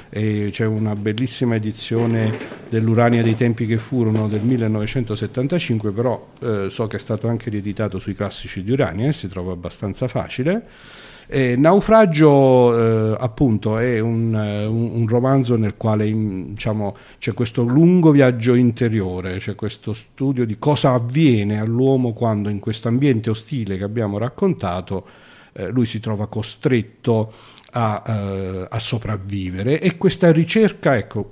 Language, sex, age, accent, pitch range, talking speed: Italian, male, 50-69, native, 105-135 Hz, 145 wpm